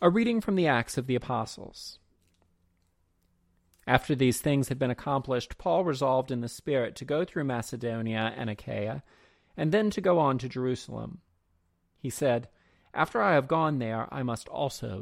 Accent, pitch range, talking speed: American, 110-155 Hz, 170 wpm